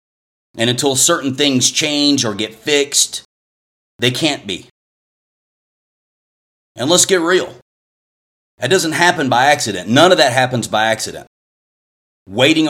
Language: English